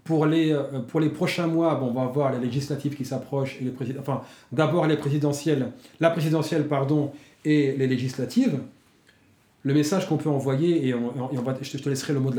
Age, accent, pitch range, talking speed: 40-59, French, 135-160 Hz, 210 wpm